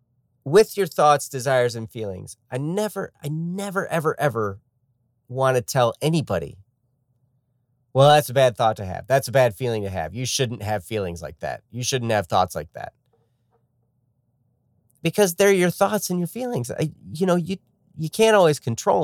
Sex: male